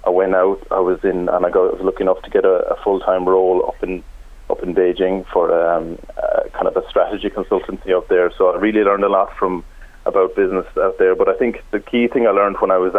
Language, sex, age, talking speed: English, male, 20-39, 260 wpm